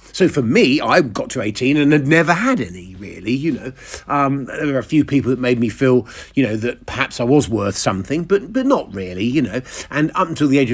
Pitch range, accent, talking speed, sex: 105-145 Hz, British, 245 wpm, male